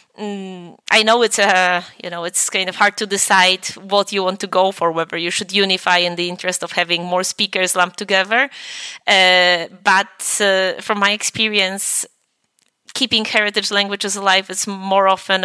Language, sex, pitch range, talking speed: English, female, 180-210 Hz, 170 wpm